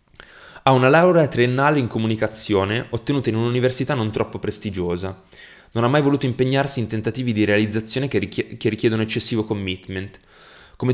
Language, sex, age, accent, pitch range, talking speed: Italian, male, 20-39, native, 105-130 Hz, 150 wpm